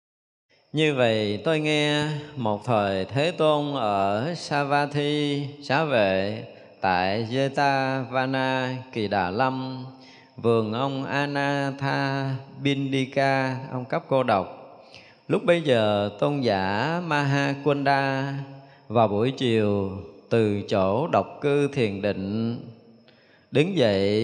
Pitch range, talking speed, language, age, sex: 115-145 Hz, 100 wpm, Vietnamese, 20-39, male